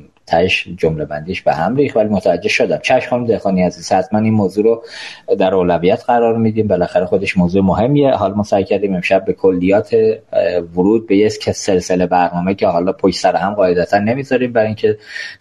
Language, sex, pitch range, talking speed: Persian, male, 95-130 Hz, 165 wpm